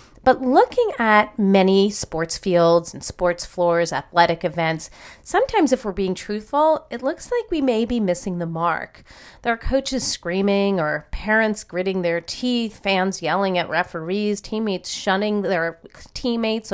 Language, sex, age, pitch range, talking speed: English, female, 40-59, 175-240 Hz, 150 wpm